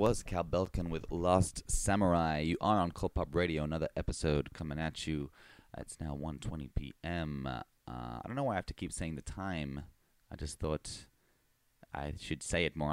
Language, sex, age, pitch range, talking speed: English, male, 30-49, 75-90 Hz, 180 wpm